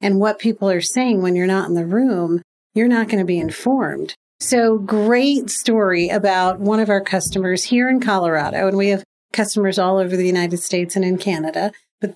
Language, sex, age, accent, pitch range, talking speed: English, female, 40-59, American, 185-225 Hz, 200 wpm